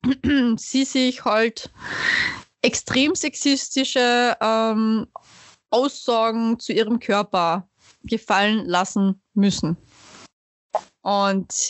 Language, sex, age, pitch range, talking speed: German, female, 20-39, 200-245 Hz, 70 wpm